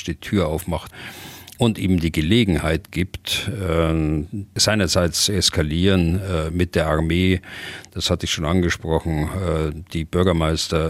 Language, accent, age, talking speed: German, German, 50-69, 110 wpm